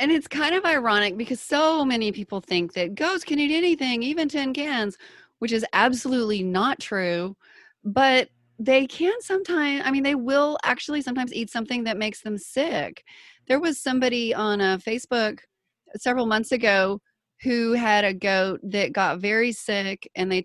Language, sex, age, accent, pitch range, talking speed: English, female, 30-49, American, 210-285 Hz, 170 wpm